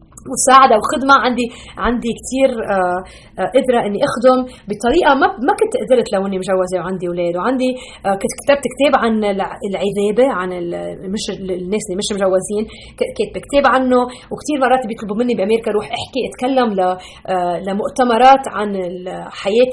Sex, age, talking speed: female, 30-49, 140 wpm